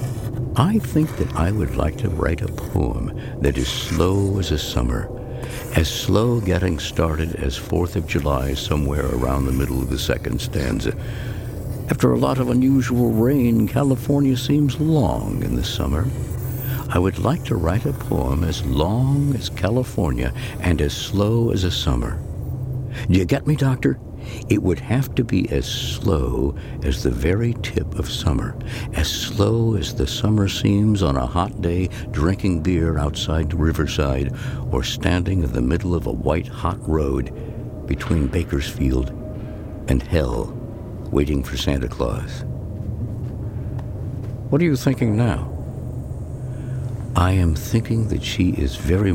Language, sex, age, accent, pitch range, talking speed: English, male, 60-79, American, 80-120 Hz, 150 wpm